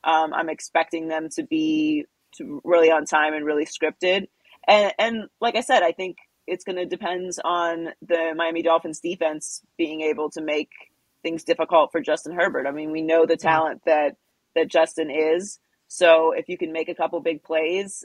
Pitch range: 155-180 Hz